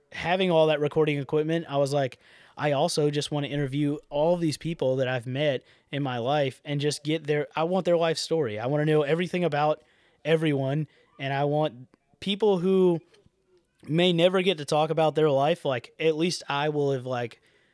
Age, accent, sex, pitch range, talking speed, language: 20-39, American, male, 135-155 Hz, 200 wpm, English